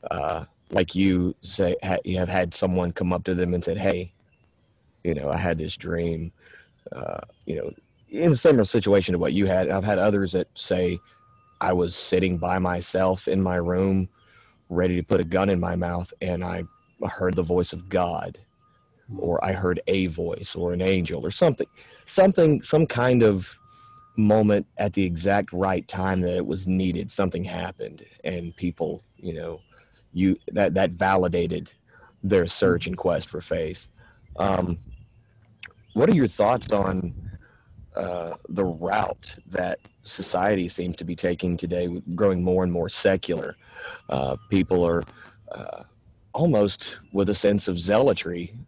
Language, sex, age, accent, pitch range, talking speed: English, male, 30-49, American, 90-100 Hz, 160 wpm